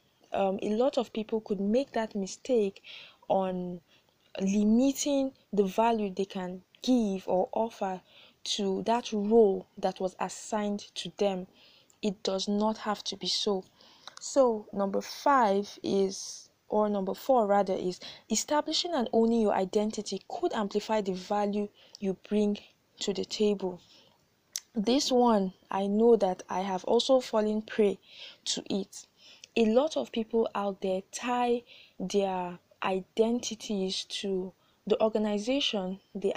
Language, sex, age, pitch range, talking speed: English, female, 20-39, 195-230 Hz, 135 wpm